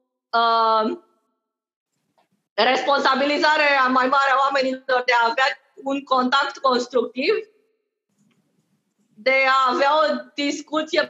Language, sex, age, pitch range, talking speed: Romanian, female, 20-39, 255-300 Hz, 90 wpm